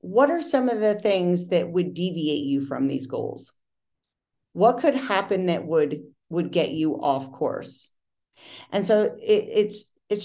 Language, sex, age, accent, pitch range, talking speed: English, female, 40-59, American, 165-220 Hz, 165 wpm